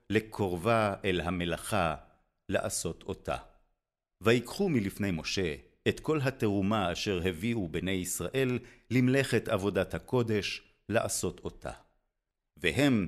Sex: male